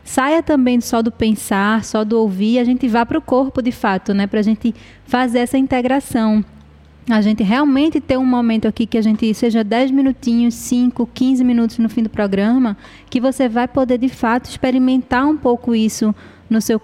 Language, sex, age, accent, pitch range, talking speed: Portuguese, female, 20-39, Brazilian, 210-255 Hz, 195 wpm